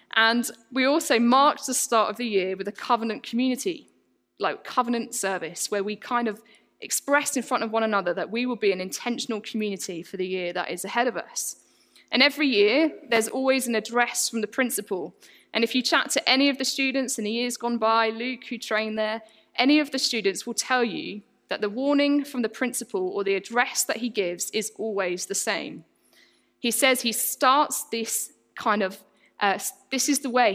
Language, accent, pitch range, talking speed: English, British, 215-265 Hz, 205 wpm